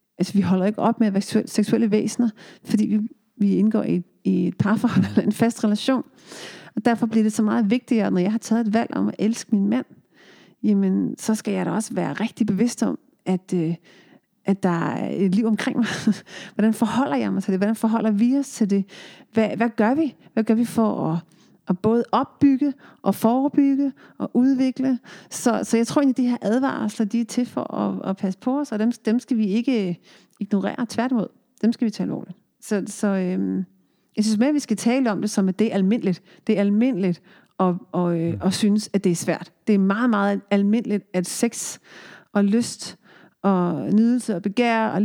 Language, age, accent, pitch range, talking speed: Danish, 40-59, native, 195-235 Hz, 210 wpm